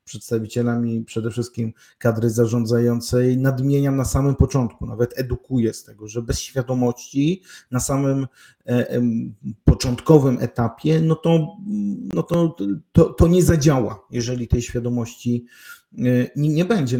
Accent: native